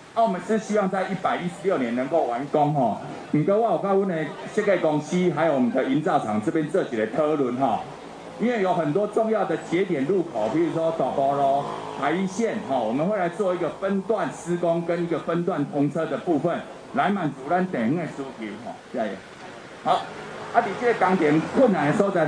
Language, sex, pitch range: Chinese, male, 160-215 Hz